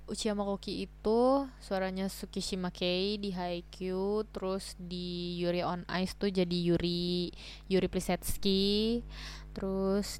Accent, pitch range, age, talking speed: native, 180-210 Hz, 20-39, 105 wpm